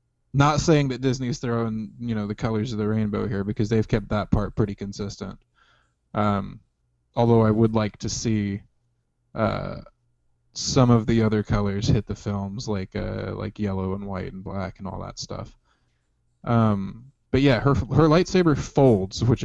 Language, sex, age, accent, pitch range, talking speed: English, male, 20-39, American, 100-125 Hz, 175 wpm